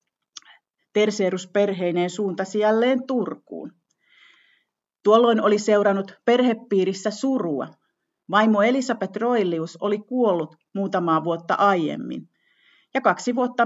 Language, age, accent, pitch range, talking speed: Finnish, 40-59, native, 175-235 Hz, 90 wpm